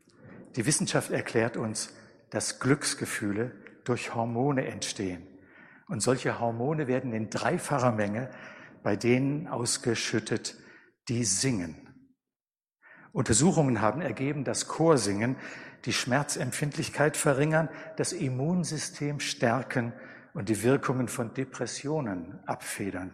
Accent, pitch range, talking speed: German, 115-140 Hz, 100 wpm